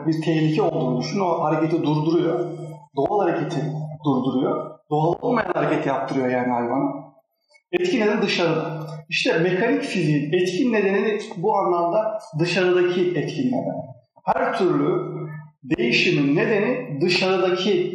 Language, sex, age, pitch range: Turkish, male, 40-59, 155-195 Hz